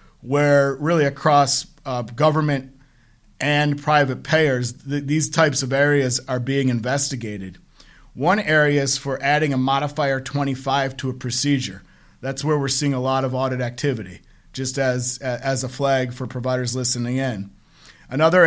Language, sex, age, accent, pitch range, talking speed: English, male, 50-69, American, 130-150 Hz, 145 wpm